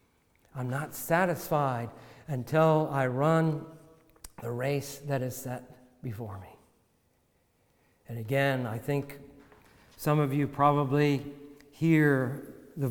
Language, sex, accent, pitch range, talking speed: English, male, American, 135-170 Hz, 105 wpm